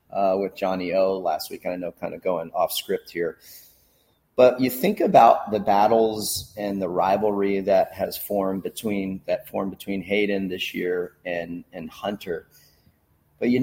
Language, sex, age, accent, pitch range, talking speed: English, male, 30-49, American, 90-115 Hz, 165 wpm